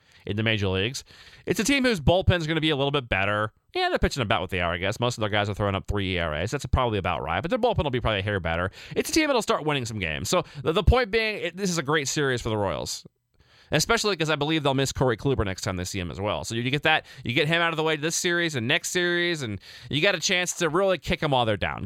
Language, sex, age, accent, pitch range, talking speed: English, male, 30-49, American, 110-160 Hz, 305 wpm